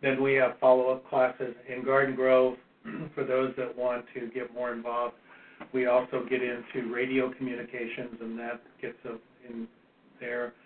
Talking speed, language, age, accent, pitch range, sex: 160 wpm, English, 60-79, American, 120-130 Hz, male